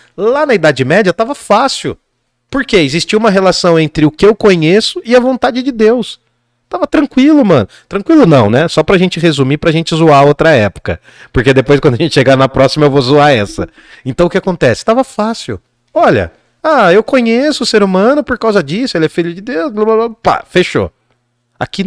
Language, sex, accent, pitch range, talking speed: Portuguese, male, Brazilian, 120-180 Hz, 210 wpm